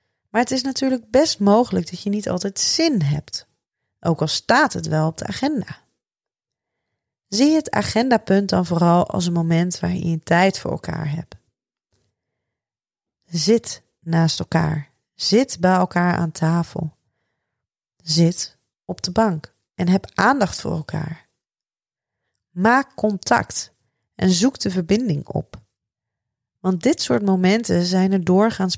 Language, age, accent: Dutch, 30-49, Dutch